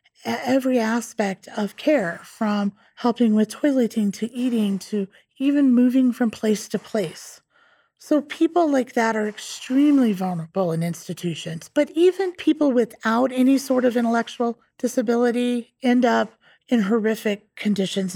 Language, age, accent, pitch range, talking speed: English, 30-49, American, 205-250 Hz, 130 wpm